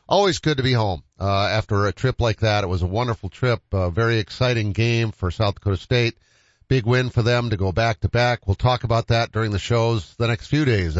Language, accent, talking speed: English, American, 235 wpm